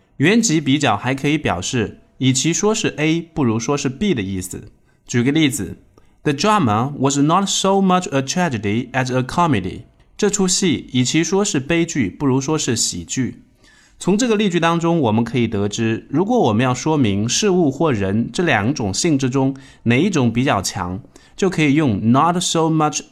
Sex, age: male, 20-39